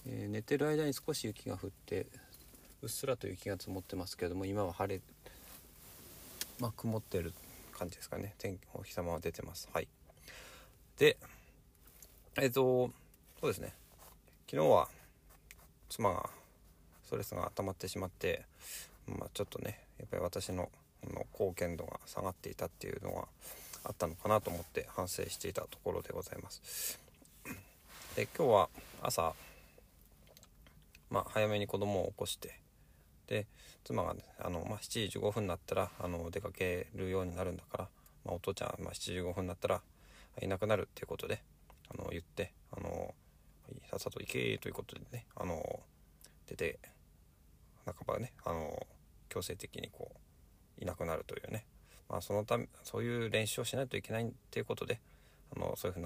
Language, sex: Japanese, male